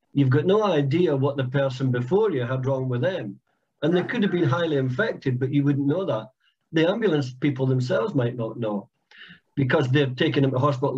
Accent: British